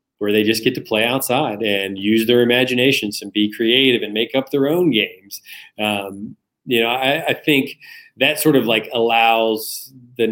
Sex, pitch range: male, 105-120 Hz